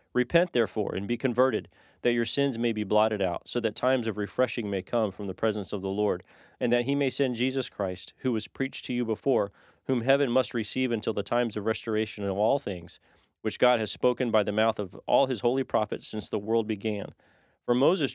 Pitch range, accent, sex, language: 110-130 Hz, American, male, English